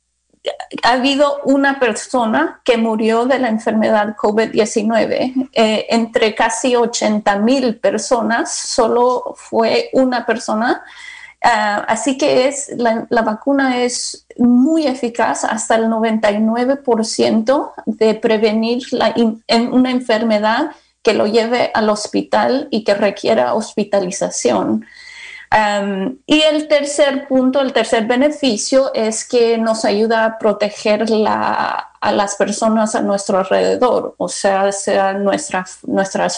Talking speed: 105 wpm